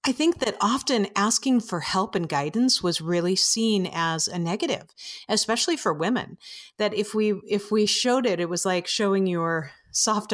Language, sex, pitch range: English, female, 180-235 Hz